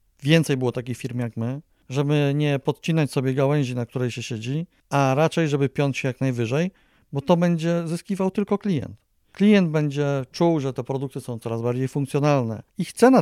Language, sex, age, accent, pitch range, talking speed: Polish, male, 40-59, native, 130-150 Hz, 180 wpm